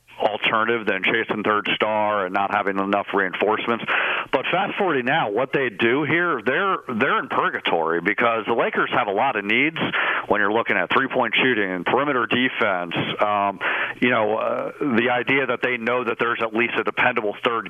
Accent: American